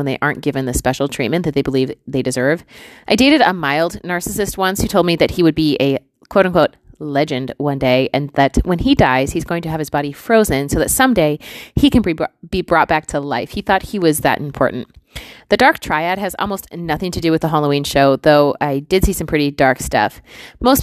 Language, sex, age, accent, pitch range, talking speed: English, female, 30-49, American, 145-180 Hz, 230 wpm